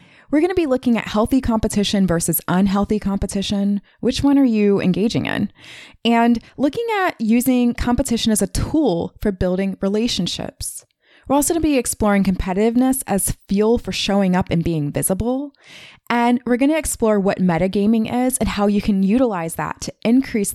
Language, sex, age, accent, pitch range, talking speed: English, female, 20-39, American, 165-230 Hz, 170 wpm